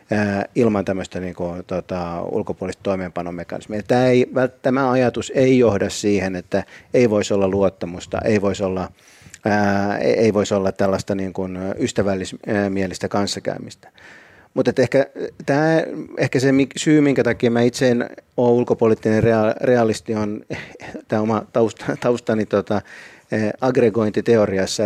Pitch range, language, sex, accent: 100-115 Hz, Finnish, male, native